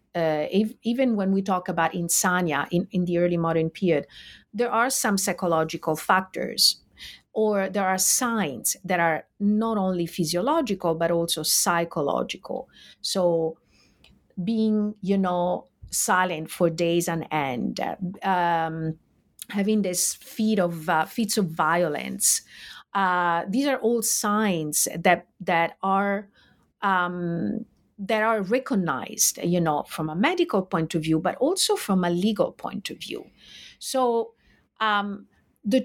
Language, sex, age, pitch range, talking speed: English, female, 50-69, 170-225 Hz, 130 wpm